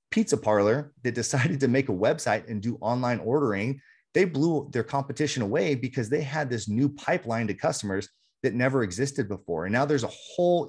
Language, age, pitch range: English, 30-49, 105-140 Hz